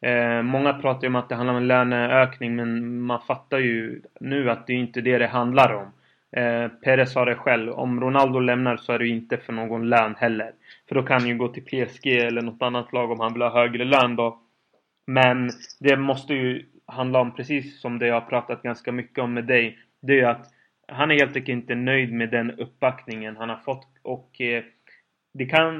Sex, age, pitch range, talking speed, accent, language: male, 20-39, 120-135 Hz, 225 wpm, native, Swedish